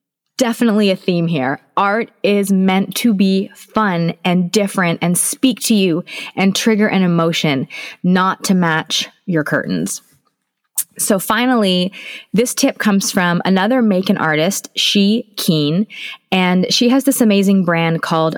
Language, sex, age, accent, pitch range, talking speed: English, female, 20-39, American, 170-225 Hz, 145 wpm